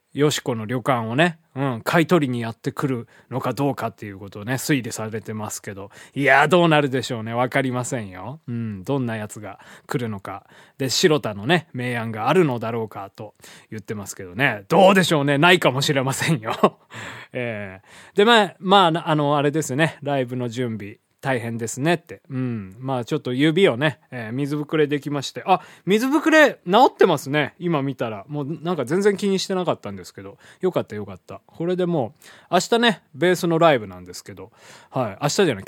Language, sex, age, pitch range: Japanese, male, 20-39, 115-170 Hz